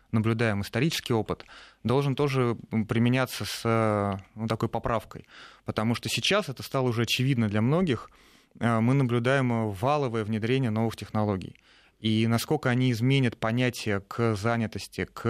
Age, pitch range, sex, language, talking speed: 30-49, 110-125 Hz, male, Russian, 125 wpm